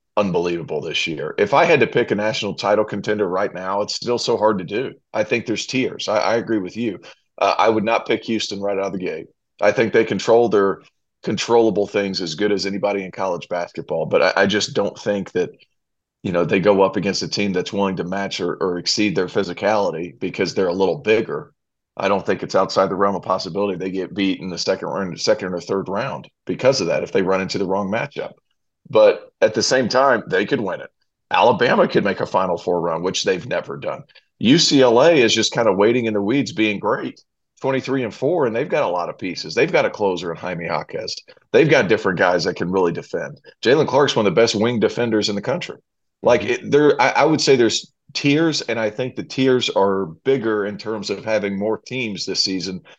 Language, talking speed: English, 230 wpm